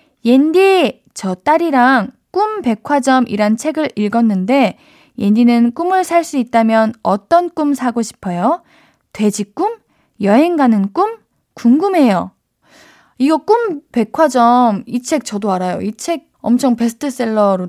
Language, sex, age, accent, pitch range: Korean, female, 20-39, native, 220-315 Hz